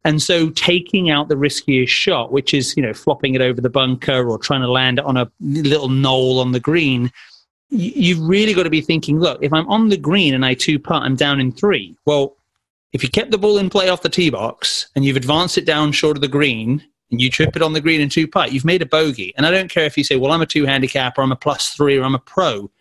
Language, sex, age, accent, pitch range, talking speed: English, male, 30-49, British, 140-170 Hz, 275 wpm